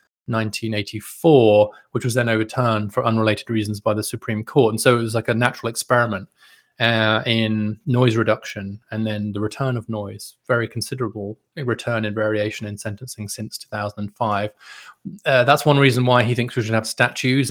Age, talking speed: 30-49, 170 wpm